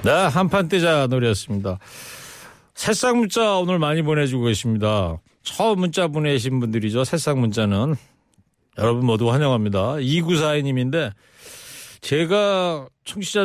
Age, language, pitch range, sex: 40-59, Korean, 125-170 Hz, male